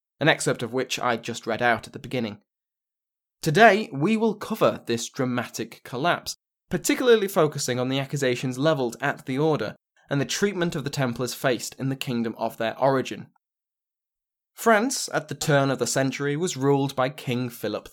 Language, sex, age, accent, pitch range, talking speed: English, male, 20-39, British, 115-160 Hz, 175 wpm